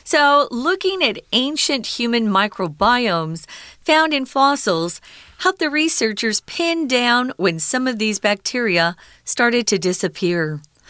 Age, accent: 40-59, American